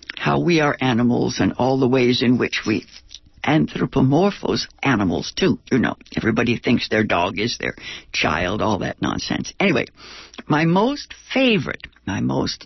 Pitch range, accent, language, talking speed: 125-170 Hz, American, English, 150 wpm